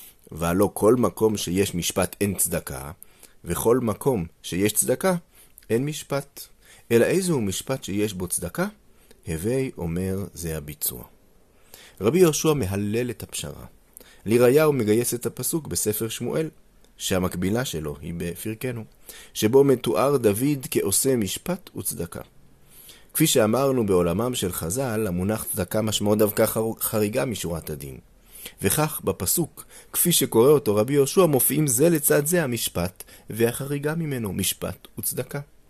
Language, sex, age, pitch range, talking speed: Hebrew, male, 30-49, 90-130 Hz, 120 wpm